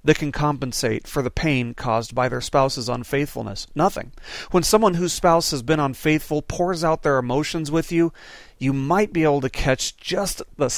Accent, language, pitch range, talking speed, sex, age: American, English, 130-165 Hz, 185 wpm, male, 40-59